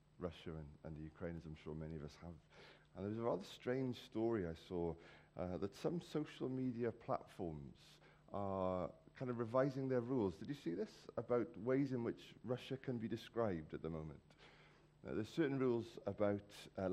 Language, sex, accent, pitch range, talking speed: English, male, British, 90-130 Hz, 190 wpm